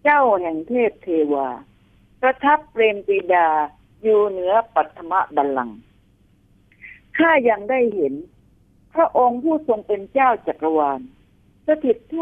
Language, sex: Thai, female